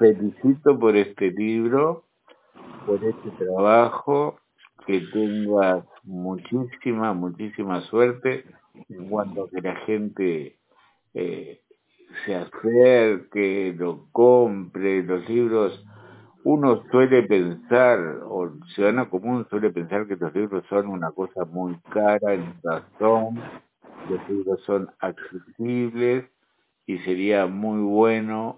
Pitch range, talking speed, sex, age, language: 95-115 Hz, 105 wpm, male, 60-79, Spanish